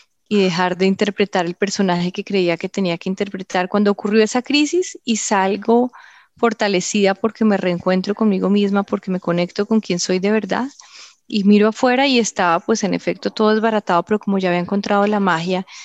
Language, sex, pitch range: Spanish, female, 185-210 Hz